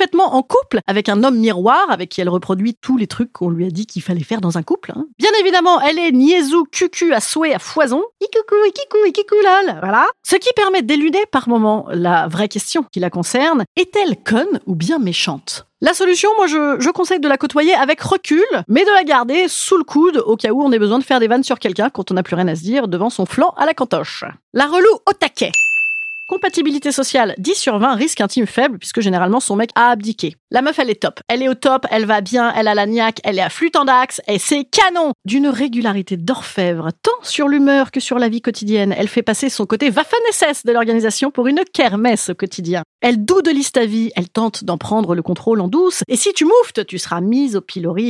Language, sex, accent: French, female, French